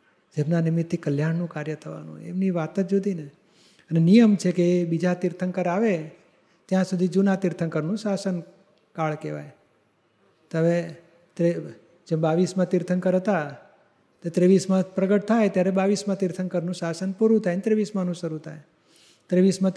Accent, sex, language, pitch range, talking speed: native, male, Gujarati, 165-195 Hz, 140 wpm